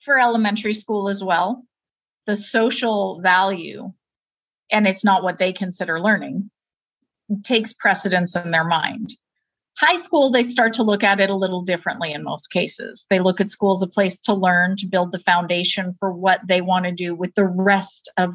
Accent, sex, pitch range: American, female, 180-225 Hz